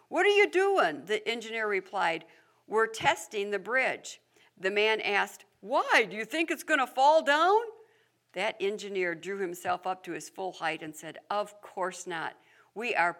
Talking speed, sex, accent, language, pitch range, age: 175 wpm, female, American, English, 180-250 Hz, 60-79